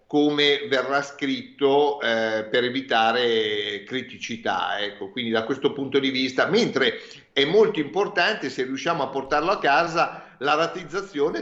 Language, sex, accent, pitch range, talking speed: Italian, male, native, 120-160 Hz, 135 wpm